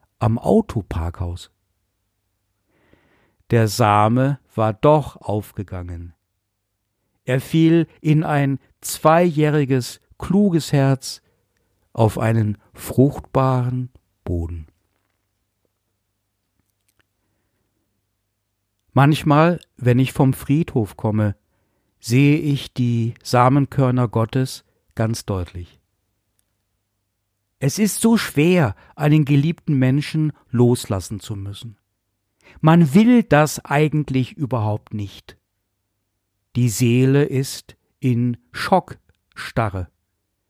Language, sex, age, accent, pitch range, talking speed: German, male, 60-79, German, 100-150 Hz, 75 wpm